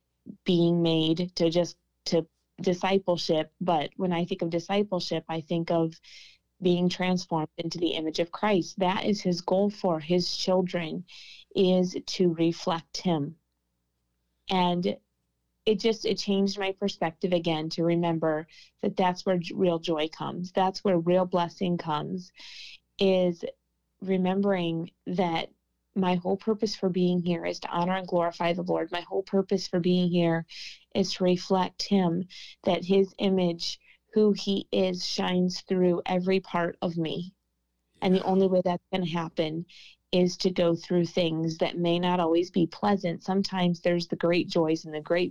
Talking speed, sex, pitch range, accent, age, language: 160 wpm, female, 170-190 Hz, American, 20-39, English